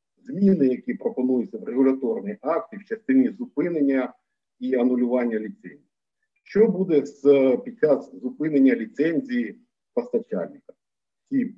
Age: 50-69